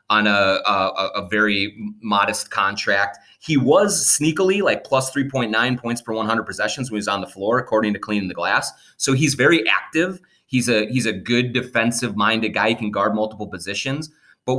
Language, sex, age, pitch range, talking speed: English, male, 30-49, 105-125 Hz, 190 wpm